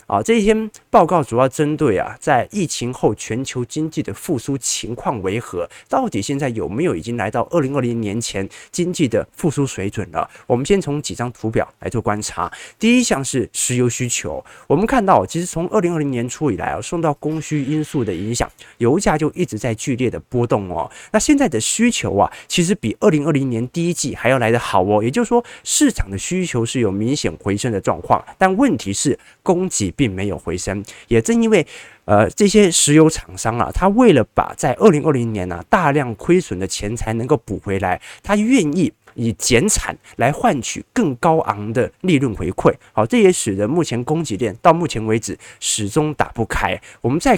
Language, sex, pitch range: Chinese, male, 110-170 Hz